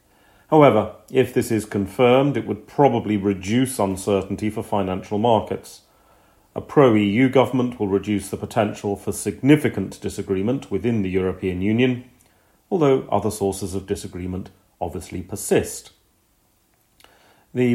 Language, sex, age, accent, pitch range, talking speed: English, male, 40-59, British, 100-115 Hz, 120 wpm